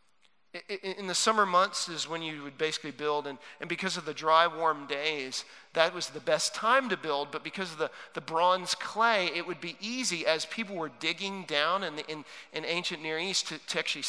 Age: 40-59